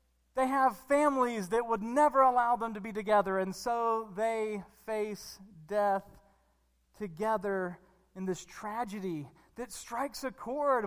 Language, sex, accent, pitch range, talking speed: English, male, American, 175-240 Hz, 135 wpm